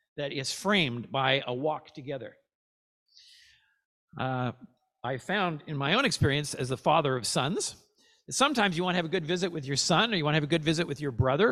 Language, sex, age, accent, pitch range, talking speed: English, male, 50-69, American, 145-235 Hz, 215 wpm